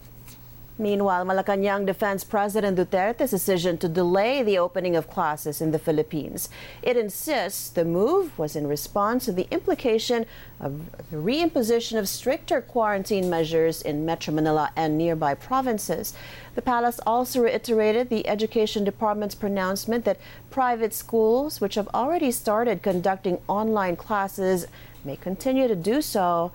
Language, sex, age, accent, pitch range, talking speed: English, female, 40-59, American, 180-240 Hz, 140 wpm